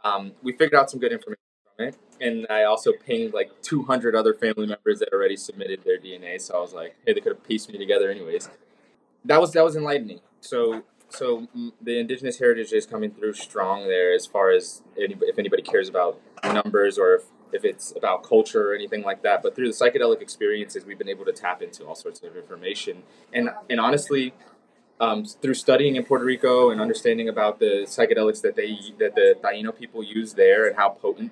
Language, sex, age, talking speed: English, male, 20-39, 210 wpm